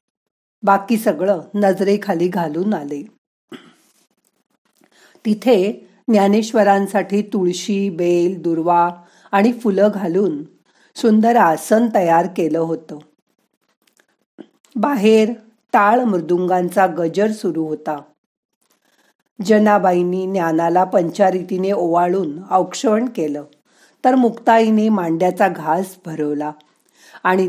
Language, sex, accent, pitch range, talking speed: Marathi, female, native, 170-210 Hz, 50 wpm